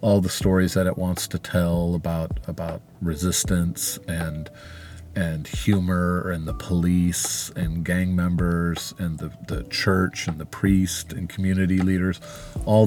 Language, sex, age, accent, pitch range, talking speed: English, male, 40-59, American, 85-95 Hz, 145 wpm